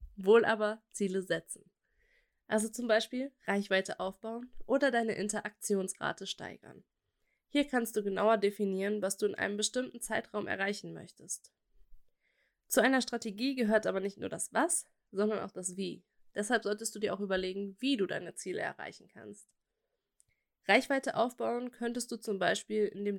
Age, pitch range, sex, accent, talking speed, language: 20-39, 200-240 Hz, female, German, 150 wpm, German